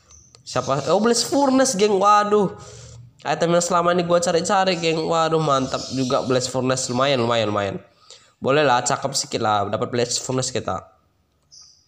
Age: 10-29